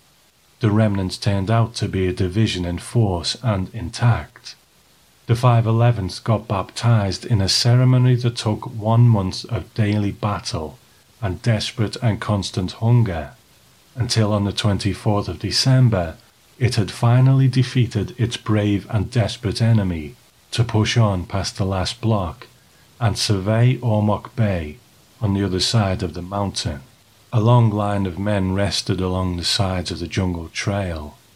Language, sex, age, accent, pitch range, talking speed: English, male, 40-59, British, 95-115 Hz, 145 wpm